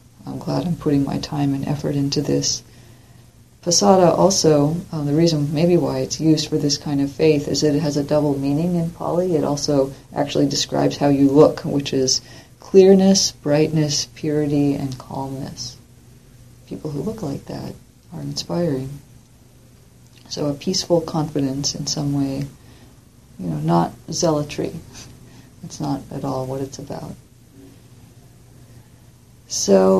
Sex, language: female, English